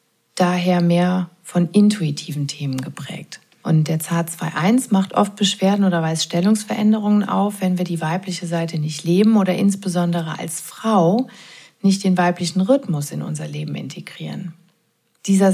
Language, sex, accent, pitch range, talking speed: German, female, German, 160-195 Hz, 145 wpm